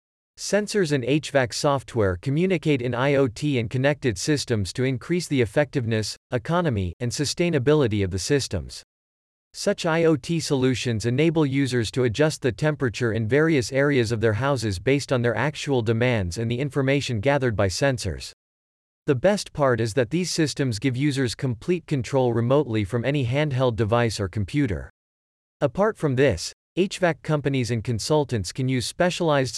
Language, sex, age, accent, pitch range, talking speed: English, male, 40-59, American, 115-150 Hz, 150 wpm